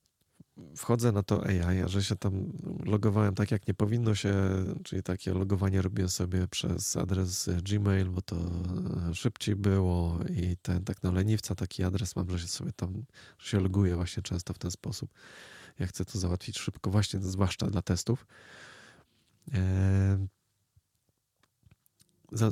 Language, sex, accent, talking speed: Polish, male, native, 150 wpm